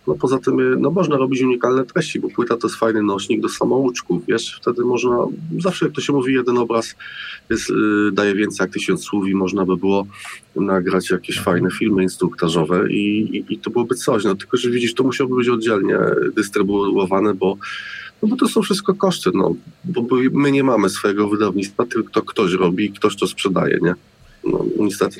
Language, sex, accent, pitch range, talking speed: Polish, male, native, 100-130 Hz, 195 wpm